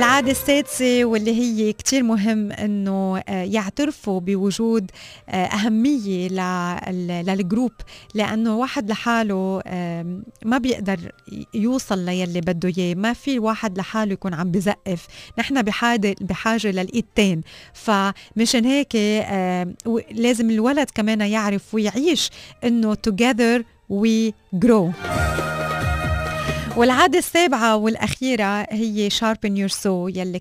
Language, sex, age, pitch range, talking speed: Arabic, female, 30-49, 190-230 Hz, 95 wpm